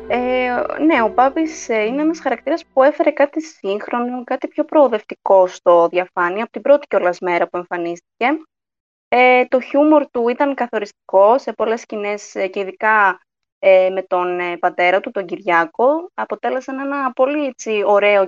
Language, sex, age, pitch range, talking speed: Greek, female, 20-39, 185-290 Hz, 150 wpm